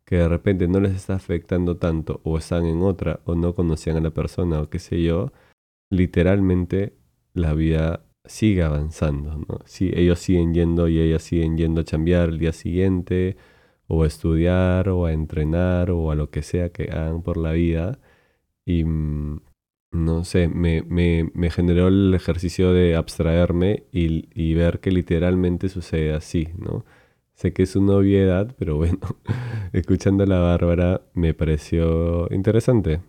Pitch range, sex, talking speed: 80-90 Hz, male, 165 wpm